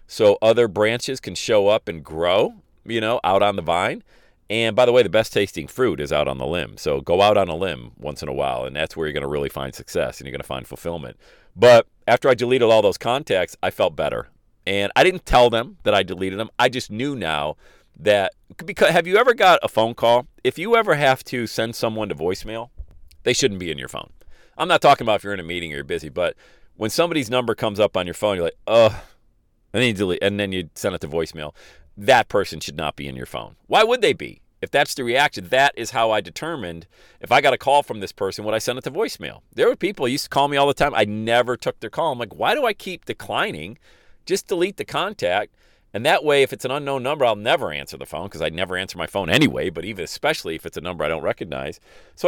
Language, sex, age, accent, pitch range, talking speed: English, male, 40-59, American, 90-135 Hz, 255 wpm